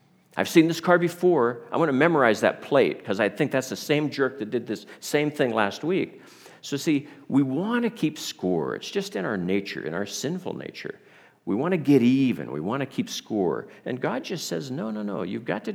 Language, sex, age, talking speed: English, male, 50-69, 230 wpm